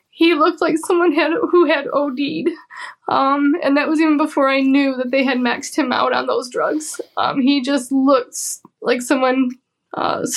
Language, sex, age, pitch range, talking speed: English, female, 10-29, 230-275 Hz, 185 wpm